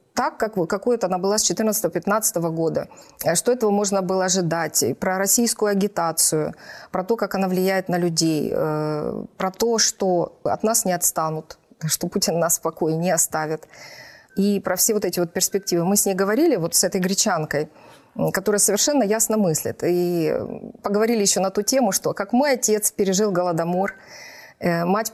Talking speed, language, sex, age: 165 wpm, Russian, female, 30-49